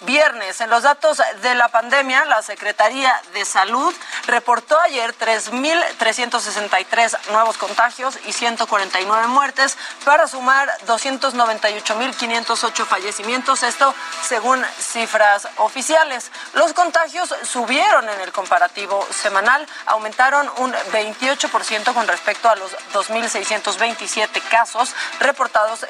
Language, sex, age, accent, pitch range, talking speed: Spanish, female, 30-49, Mexican, 215-270 Hz, 100 wpm